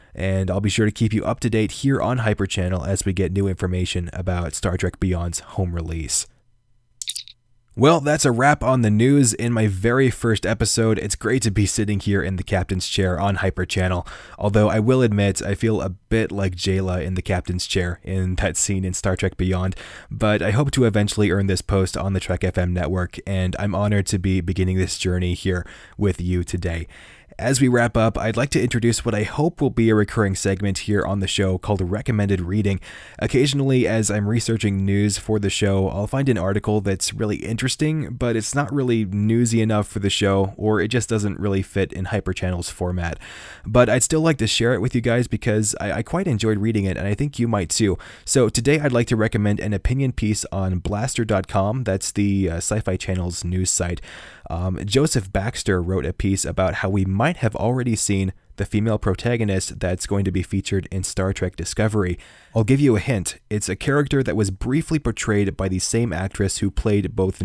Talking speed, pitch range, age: 210 wpm, 95-115 Hz, 20-39